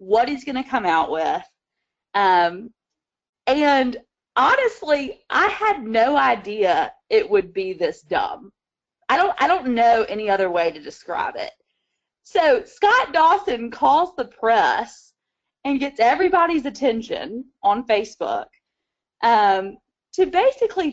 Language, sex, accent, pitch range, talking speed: English, female, American, 190-285 Hz, 125 wpm